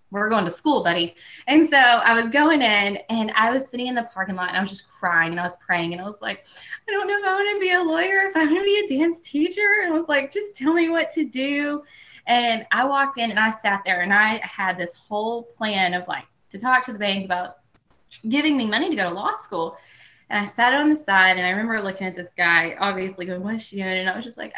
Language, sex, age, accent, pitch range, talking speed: English, female, 10-29, American, 190-290 Hz, 280 wpm